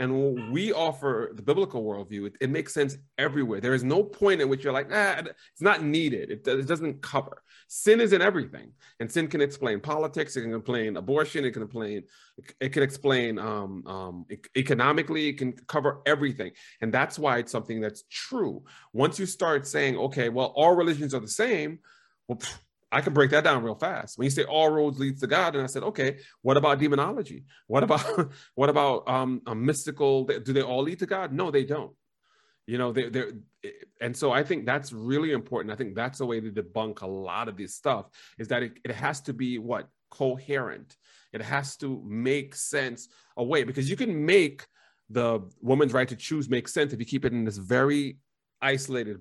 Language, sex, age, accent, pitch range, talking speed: English, male, 30-49, American, 120-150 Hz, 205 wpm